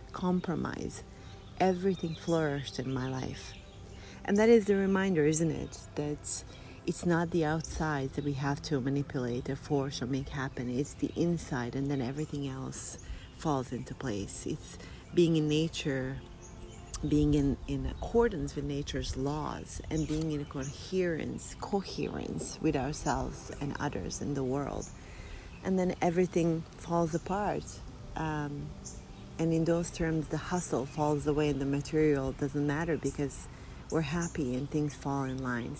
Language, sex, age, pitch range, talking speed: English, female, 40-59, 135-160 Hz, 150 wpm